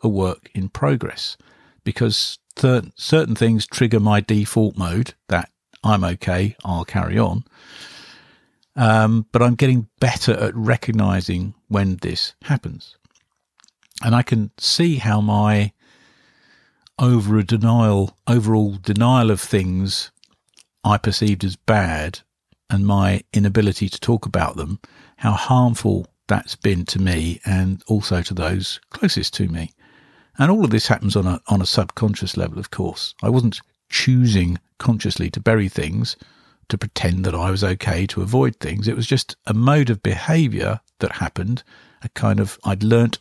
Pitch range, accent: 95-115 Hz, British